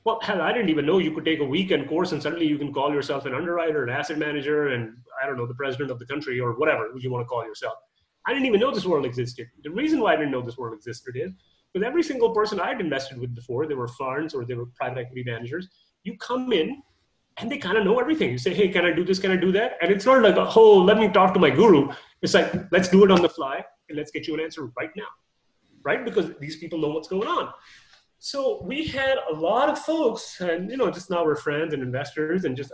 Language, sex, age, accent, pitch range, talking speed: English, male, 30-49, Indian, 145-195 Hz, 270 wpm